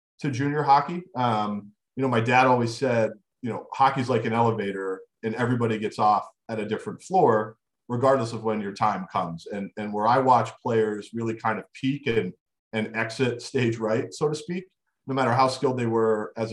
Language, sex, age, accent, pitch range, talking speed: English, male, 40-59, American, 110-125 Hz, 200 wpm